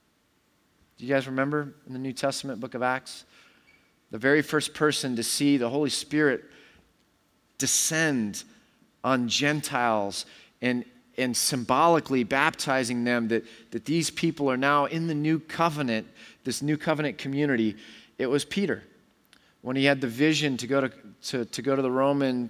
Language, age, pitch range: English, 40-59, 120-155 Hz